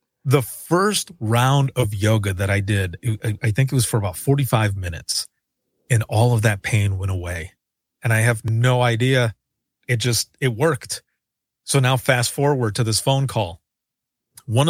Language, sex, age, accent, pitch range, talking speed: English, male, 30-49, American, 110-130 Hz, 165 wpm